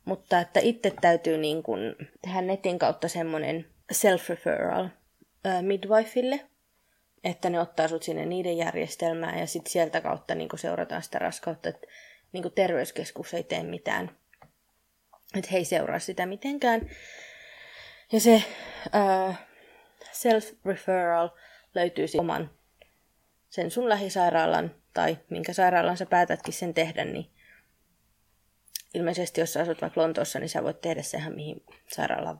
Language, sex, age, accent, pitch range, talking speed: Finnish, female, 20-39, native, 160-200 Hz, 130 wpm